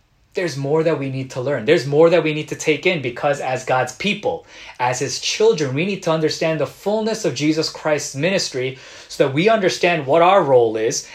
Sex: male